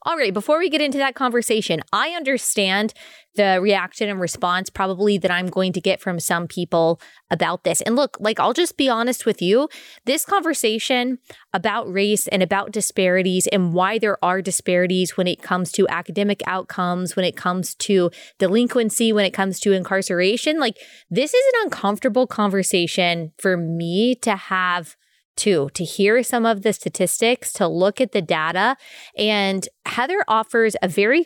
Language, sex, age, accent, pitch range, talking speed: English, female, 20-39, American, 185-235 Hz, 170 wpm